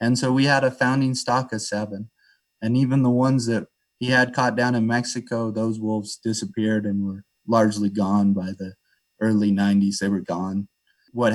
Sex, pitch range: male, 105-125 Hz